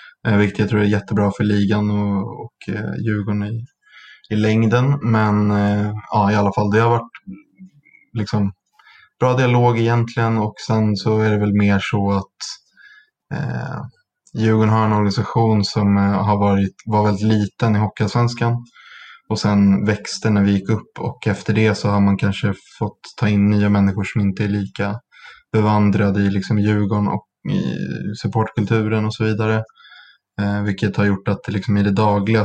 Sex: male